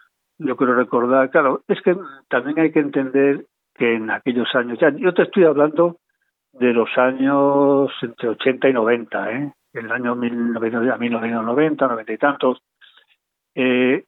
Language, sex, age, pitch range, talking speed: Spanish, male, 60-79, 120-155 Hz, 155 wpm